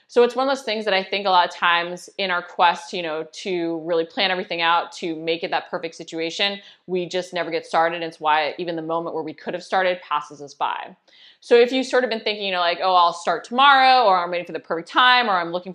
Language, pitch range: English, 170-205 Hz